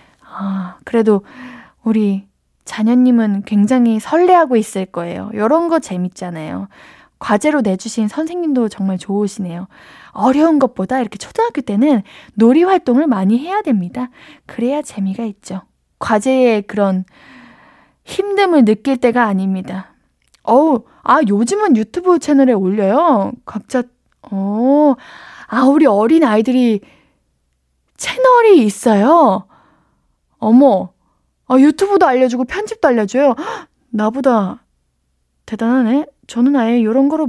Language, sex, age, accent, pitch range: Korean, female, 20-39, native, 210-290 Hz